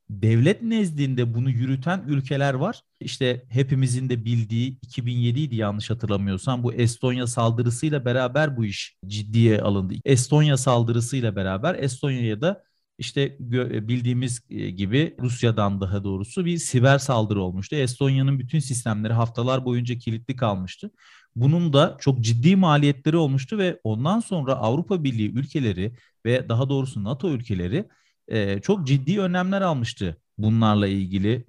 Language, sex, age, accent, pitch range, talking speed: Turkish, male, 40-59, native, 115-145 Hz, 125 wpm